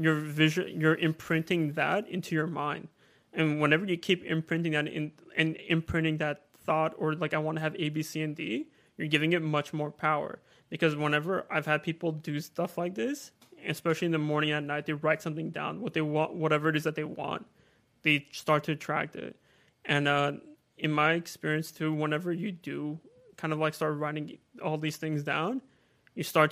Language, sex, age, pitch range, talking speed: English, male, 20-39, 150-160 Hz, 200 wpm